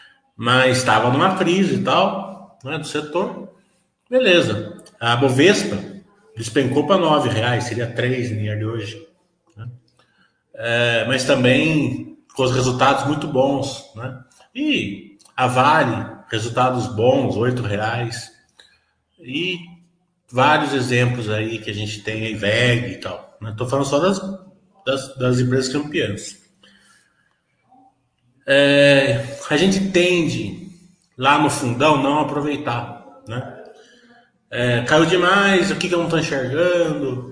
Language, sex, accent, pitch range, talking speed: Portuguese, male, Brazilian, 120-160 Hz, 125 wpm